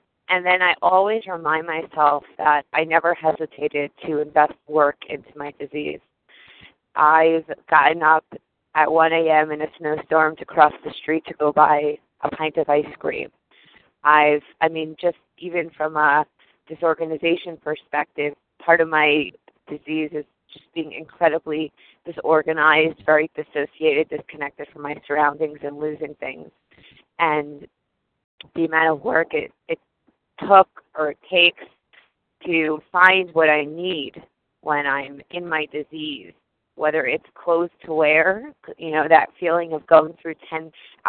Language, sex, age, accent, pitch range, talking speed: English, female, 20-39, American, 150-165 Hz, 145 wpm